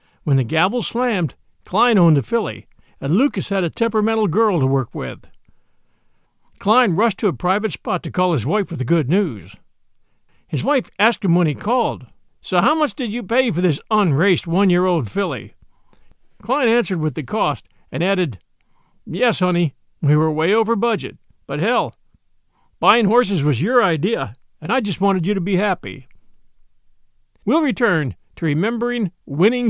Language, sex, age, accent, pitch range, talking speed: English, male, 50-69, American, 140-215 Hz, 170 wpm